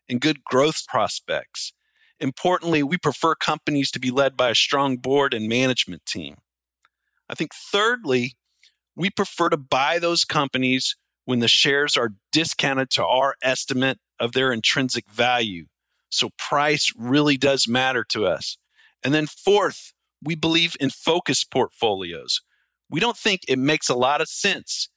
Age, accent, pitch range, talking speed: 40-59, American, 130-160 Hz, 150 wpm